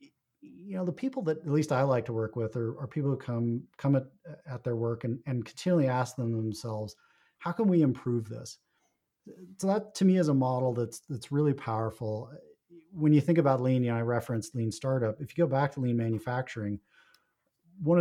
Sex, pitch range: male, 115-150 Hz